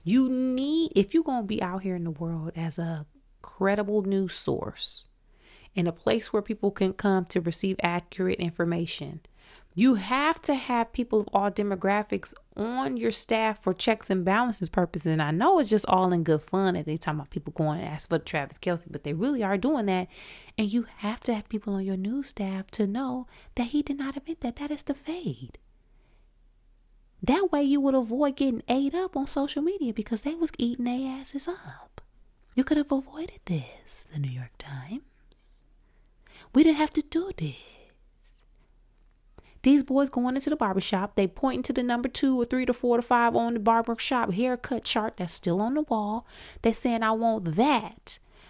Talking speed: 195 wpm